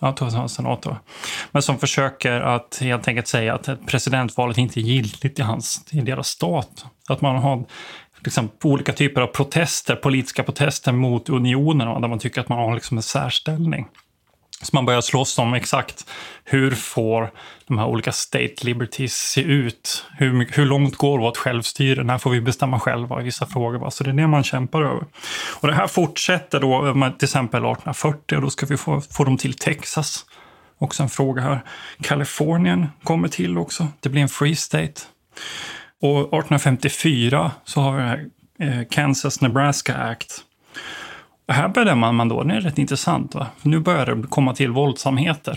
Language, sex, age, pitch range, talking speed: Swedish, male, 20-39, 125-145 Hz, 170 wpm